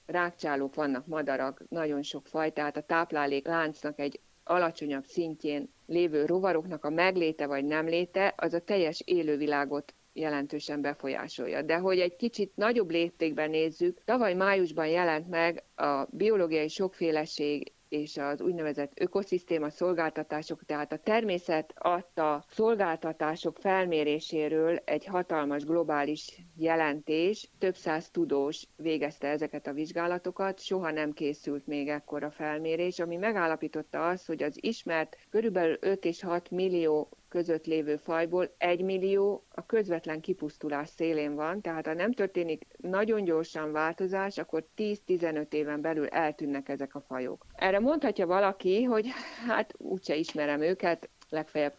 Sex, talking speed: female, 130 wpm